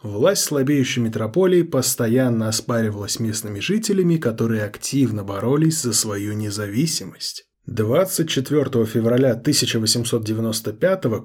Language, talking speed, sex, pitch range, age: Russian, 90 wpm, male, 115-145 Hz, 20-39